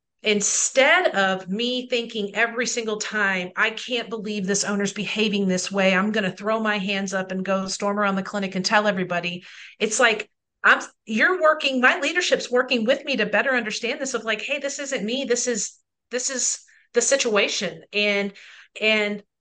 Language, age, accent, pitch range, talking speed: English, 40-59, American, 200-250 Hz, 180 wpm